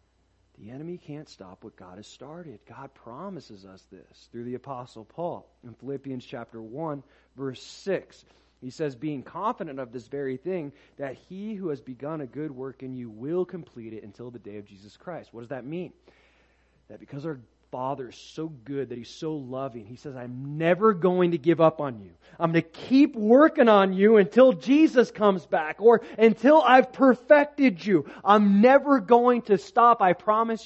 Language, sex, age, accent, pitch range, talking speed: English, male, 30-49, American, 115-180 Hz, 190 wpm